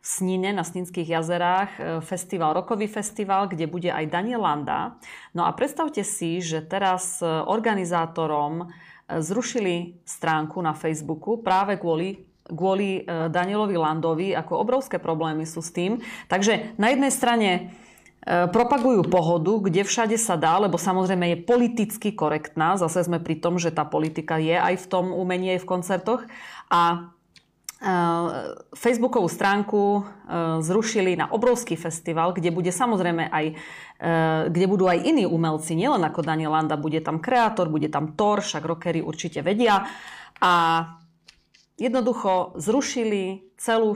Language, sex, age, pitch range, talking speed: Slovak, female, 30-49, 165-200 Hz, 135 wpm